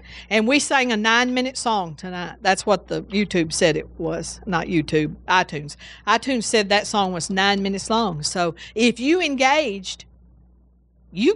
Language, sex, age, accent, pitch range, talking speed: English, female, 50-69, American, 200-260 Hz, 165 wpm